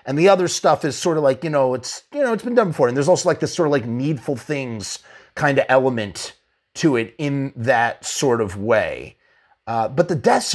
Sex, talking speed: male, 235 wpm